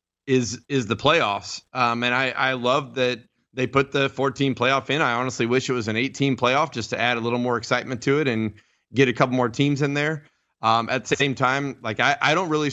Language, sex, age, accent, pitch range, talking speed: English, male, 30-49, American, 115-135 Hz, 240 wpm